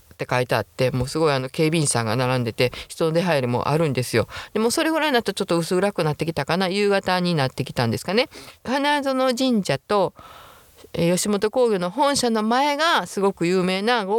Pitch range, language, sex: 165-250 Hz, Japanese, female